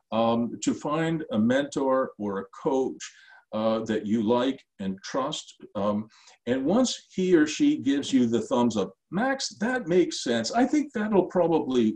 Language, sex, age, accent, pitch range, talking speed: English, male, 50-69, American, 110-185 Hz, 165 wpm